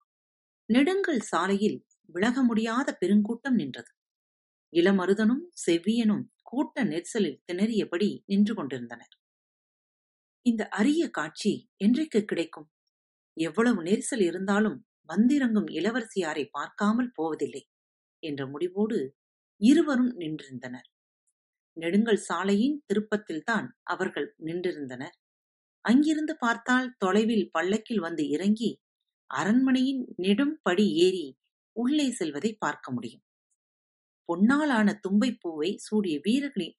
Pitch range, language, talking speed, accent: 165-250 Hz, Tamil, 85 wpm, native